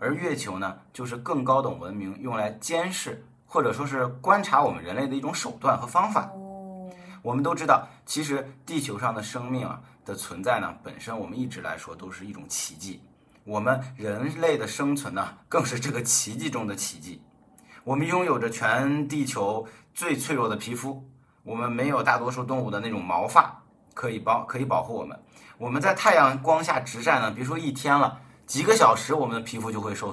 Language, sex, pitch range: Chinese, male, 110-140 Hz